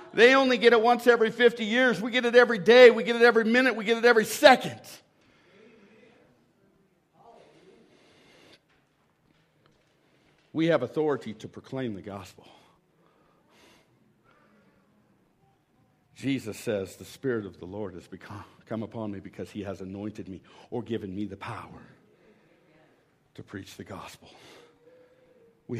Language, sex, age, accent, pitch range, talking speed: English, male, 60-79, American, 110-175 Hz, 130 wpm